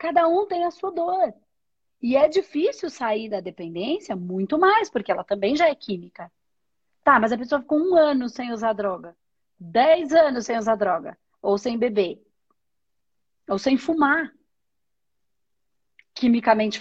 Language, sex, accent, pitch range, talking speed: Portuguese, female, Brazilian, 220-310 Hz, 150 wpm